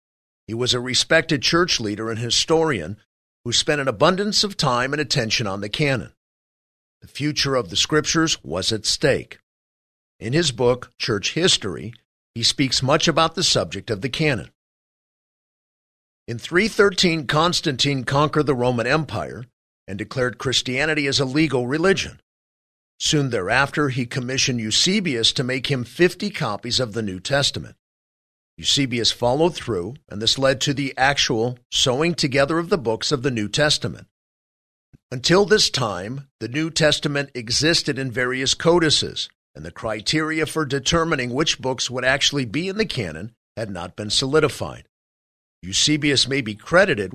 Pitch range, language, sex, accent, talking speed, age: 115-155 Hz, English, male, American, 150 wpm, 50-69